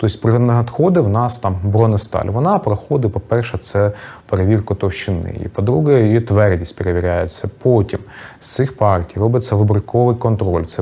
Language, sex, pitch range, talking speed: Ukrainian, male, 100-125 Hz, 135 wpm